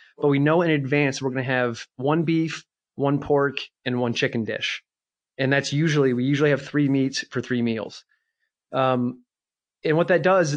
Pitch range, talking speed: 125-145 Hz, 180 wpm